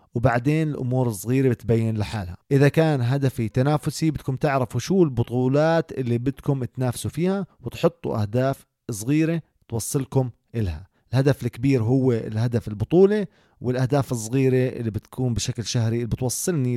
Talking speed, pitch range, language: 125 wpm, 115-145 Hz, Arabic